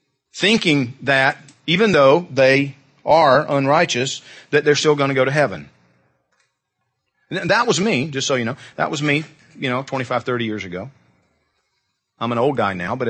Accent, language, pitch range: American, English, 120-150 Hz